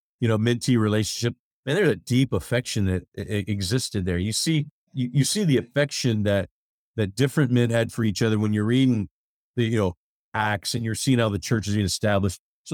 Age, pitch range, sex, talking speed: 40-59, 100-130 Hz, male, 205 wpm